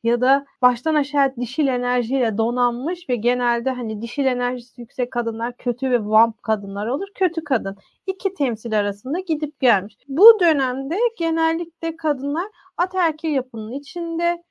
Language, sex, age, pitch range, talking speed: Turkish, female, 30-49, 240-315 Hz, 135 wpm